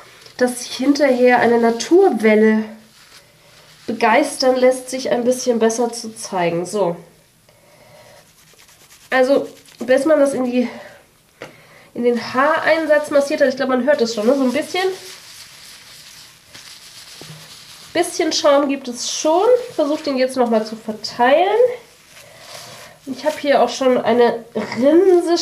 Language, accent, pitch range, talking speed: German, German, 230-290 Hz, 130 wpm